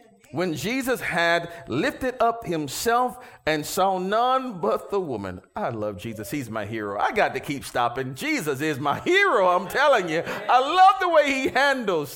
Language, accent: English, American